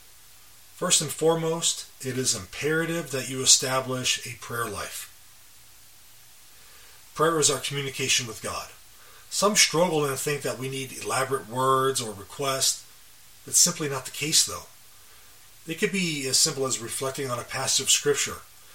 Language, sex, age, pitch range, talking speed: English, male, 30-49, 125-150 Hz, 150 wpm